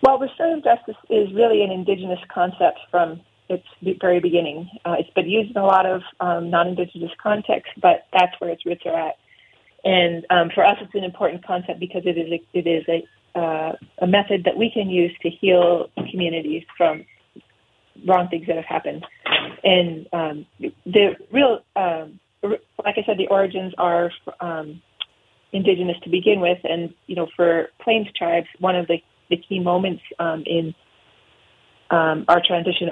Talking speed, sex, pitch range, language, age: 170 wpm, female, 170-190 Hz, English, 30-49